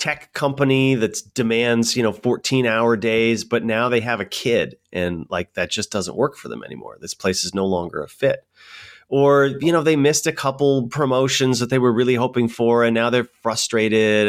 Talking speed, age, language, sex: 205 wpm, 30-49, English, male